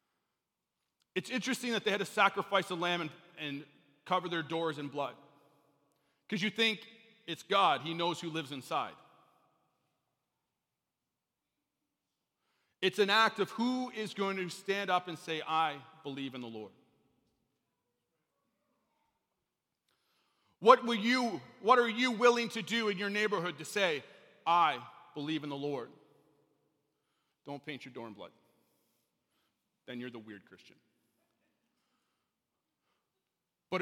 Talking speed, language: 130 wpm, English